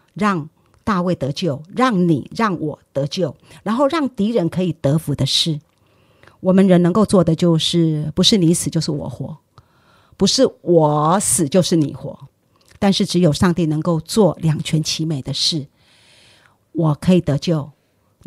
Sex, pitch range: female, 145-180 Hz